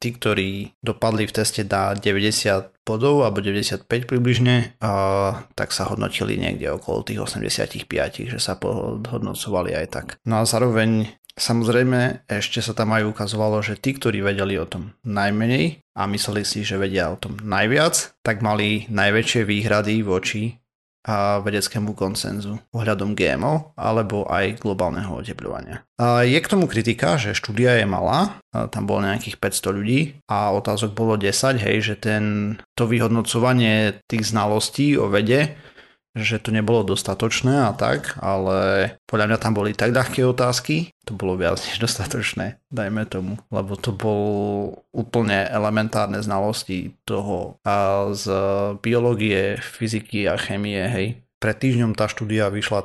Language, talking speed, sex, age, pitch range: Slovak, 145 wpm, male, 30-49, 100-120 Hz